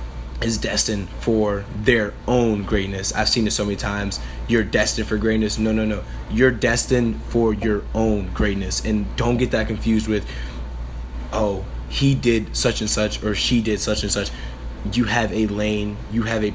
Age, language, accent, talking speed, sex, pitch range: 20-39, English, American, 180 wpm, male, 100-110 Hz